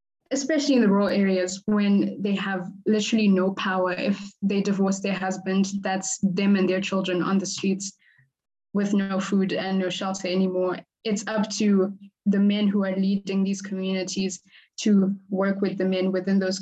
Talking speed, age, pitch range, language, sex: 175 wpm, 20-39, 185-205 Hz, English, female